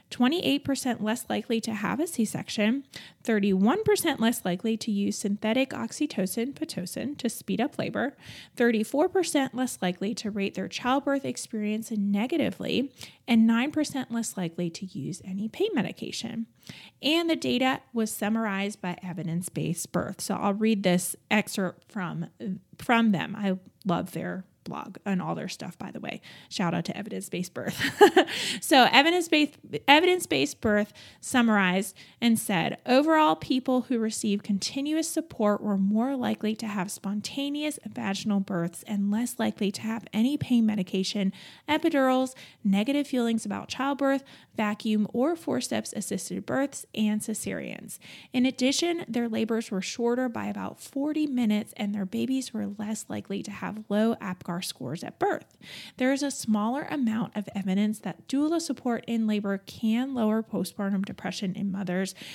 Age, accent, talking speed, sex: 20-39, American, 145 wpm, female